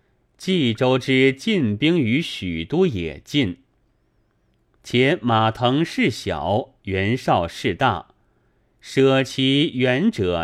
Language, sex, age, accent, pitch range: Chinese, male, 30-49, native, 95-135 Hz